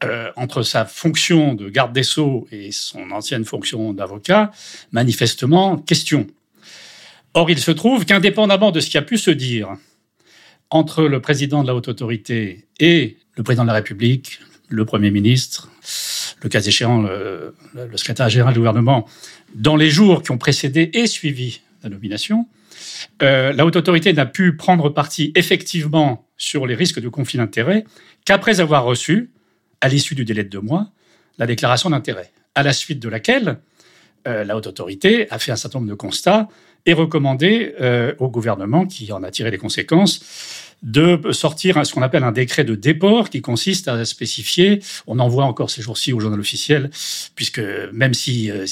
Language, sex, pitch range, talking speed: French, male, 115-170 Hz, 175 wpm